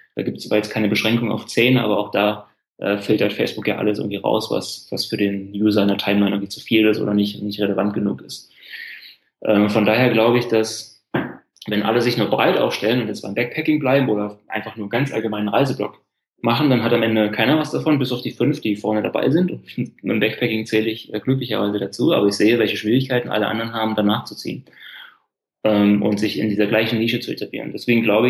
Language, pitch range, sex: German, 105-120 Hz, male